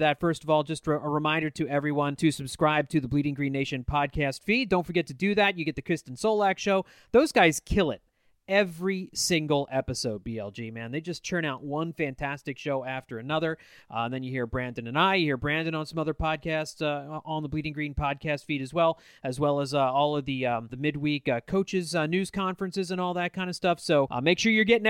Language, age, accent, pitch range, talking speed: English, 30-49, American, 140-185 Hz, 235 wpm